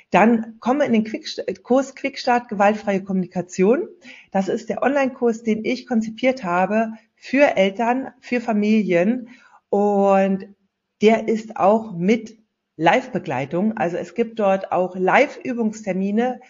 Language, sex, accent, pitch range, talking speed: German, female, German, 175-230 Hz, 120 wpm